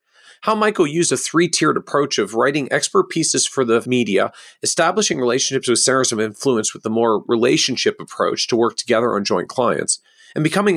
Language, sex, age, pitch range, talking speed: English, male, 40-59, 120-170 Hz, 180 wpm